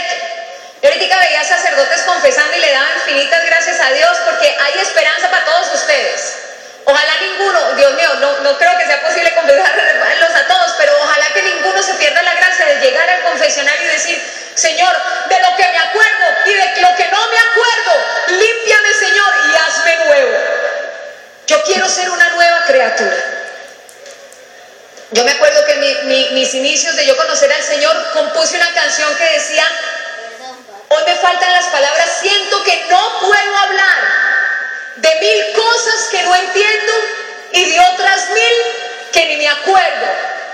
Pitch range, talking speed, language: 290-365 Hz, 160 wpm, English